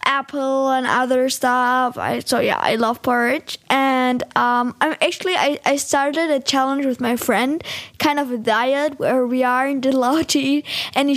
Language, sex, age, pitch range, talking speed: German, female, 10-29, 255-300 Hz, 175 wpm